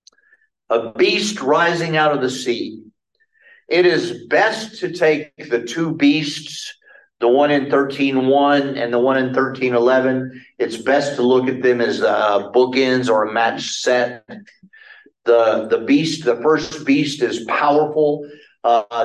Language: English